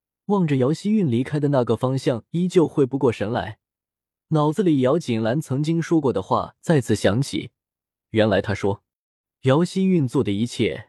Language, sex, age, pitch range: Chinese, male, 20-39, 115-165 Hz